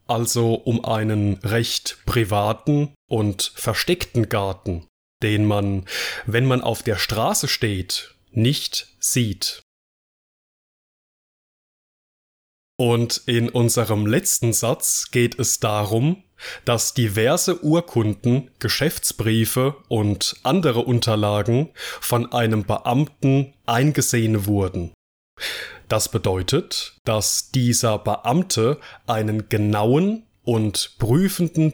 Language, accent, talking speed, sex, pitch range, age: German, German, 90 wpm, male, 110-140 Hz, 10-29